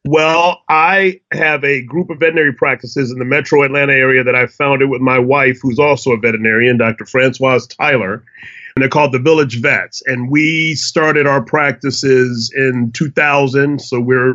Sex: male